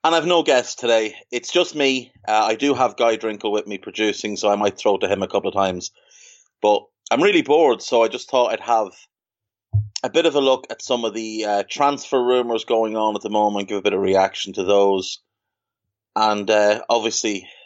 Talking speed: 220 wpm